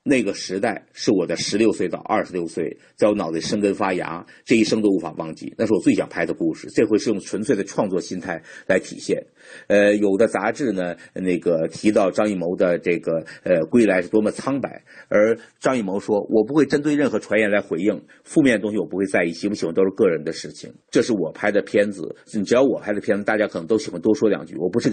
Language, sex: Chinese, male